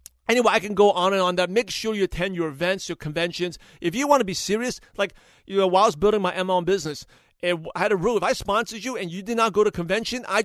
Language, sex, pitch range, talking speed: English, male, 170-205 Hz, 275 wpm